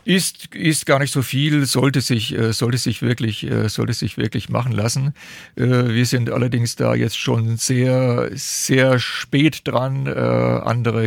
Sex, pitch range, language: male, 110-130 Hz, German